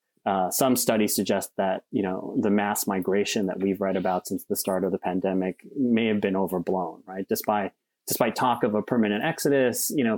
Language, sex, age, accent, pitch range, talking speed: English, male, 30-49, American, 95-115 Hz, 200 wpm